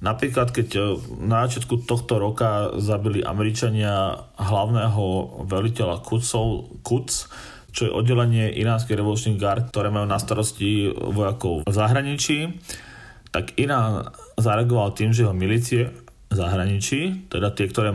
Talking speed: 115 wpm